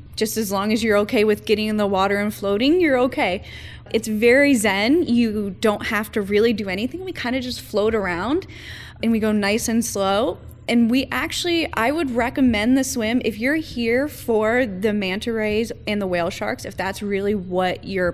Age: 10-29